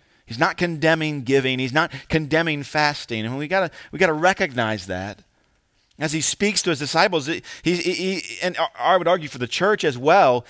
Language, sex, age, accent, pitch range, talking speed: English, male, 40-59, American, 110-180 Hz, 190 wpm